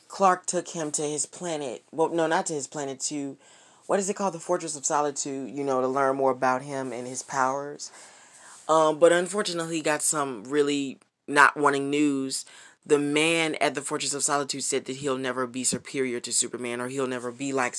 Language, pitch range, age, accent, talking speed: English, 135-165 Hz, 20-39, American, 205 wpm